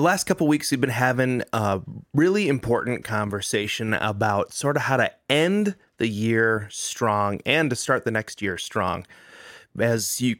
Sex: male